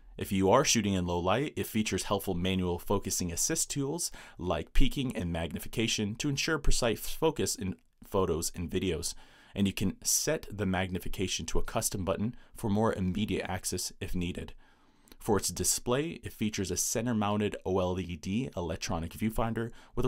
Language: English